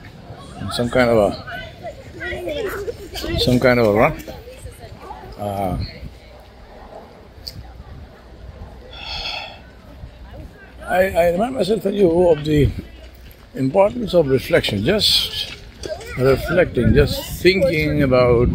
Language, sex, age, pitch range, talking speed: English, male, 60-79, 100-135 Hz, 85 wpm